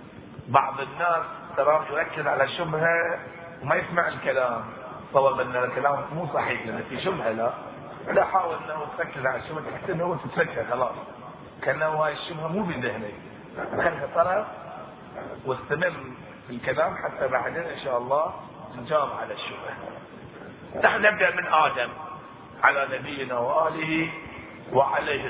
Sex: male